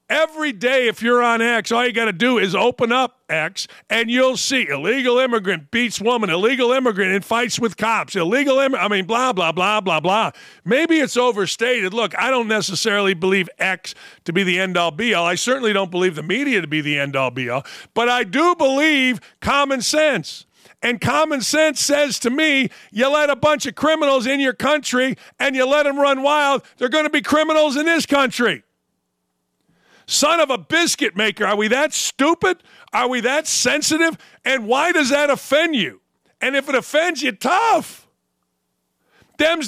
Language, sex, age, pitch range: English, male, 50-69, 195-275 Hz